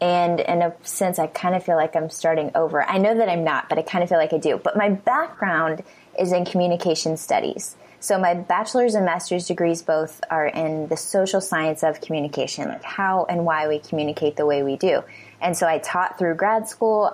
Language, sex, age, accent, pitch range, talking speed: English, female, 20-39, American, 155-180 Hz, 220 wpm